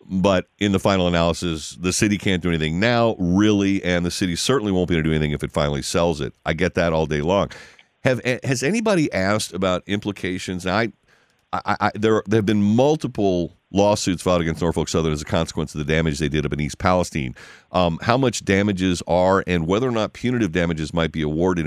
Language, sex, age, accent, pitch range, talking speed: English, male, 50-69, American, 85-110 Hz, 215 wpm